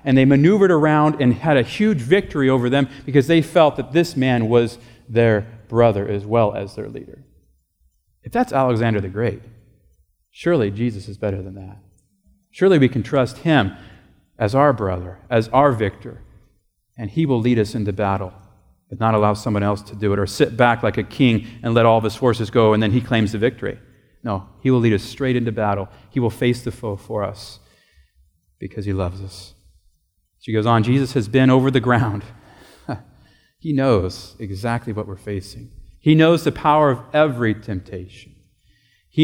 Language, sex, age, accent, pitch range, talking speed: English, male, 40-59, American, 100-130 Hz, 190 wpm